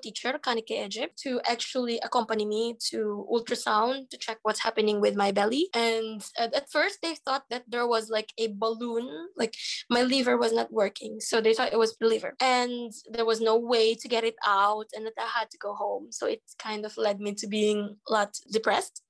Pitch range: 215-245 Hz